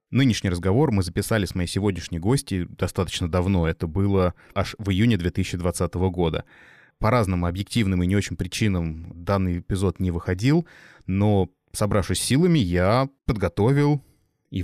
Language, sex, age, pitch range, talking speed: Russian, male, 20-39, 90-115 Hz, 140 wpm